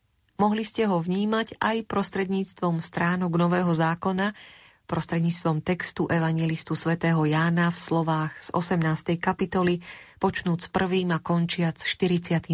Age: 30-49